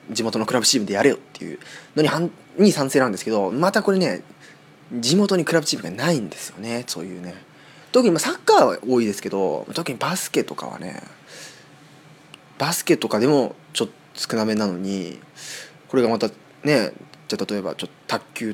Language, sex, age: Japanese, male, 20-39